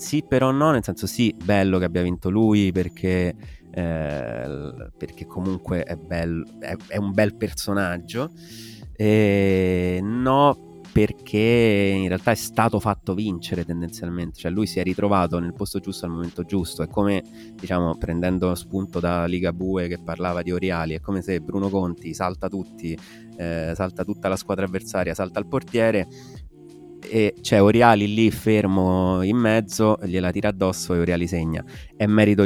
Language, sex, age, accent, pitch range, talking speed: Italian, male, 30-49, native, 85-105 Hz, 160 wpm